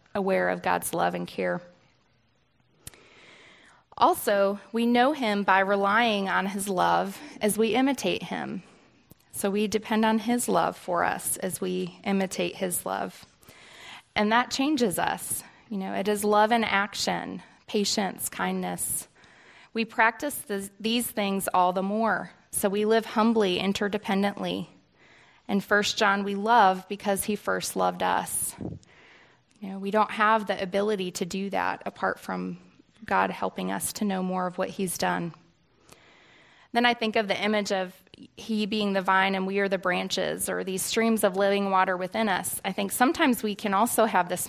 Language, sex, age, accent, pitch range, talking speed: English, female, 20-39, American, 185-220 Hz, 165 wpm